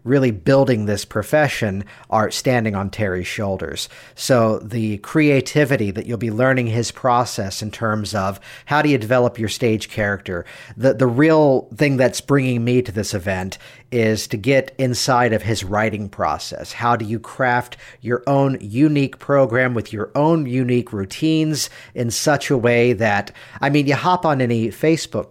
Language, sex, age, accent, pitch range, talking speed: English, male, 50-69, American, 110-140 Hz, 170 wpm